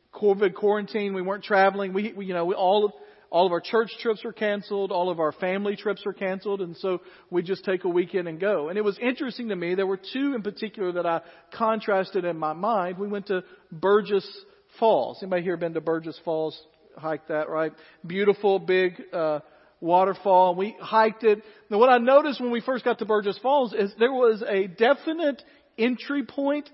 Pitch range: 185-235 Hz